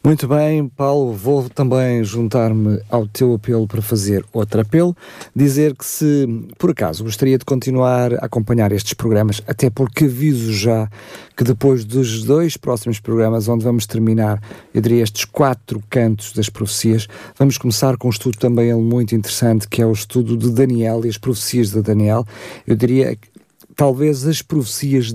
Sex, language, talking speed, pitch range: male, Portuguese, 165 wpm, 110-135 Hz